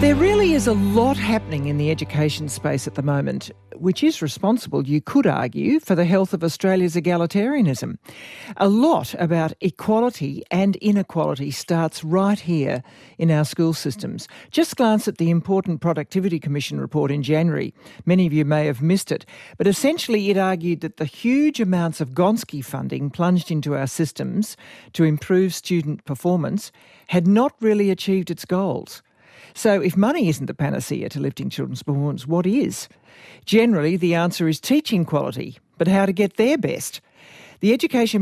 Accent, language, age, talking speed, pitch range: Australian, English, 60-79, 165 wpm, 155-205 Hz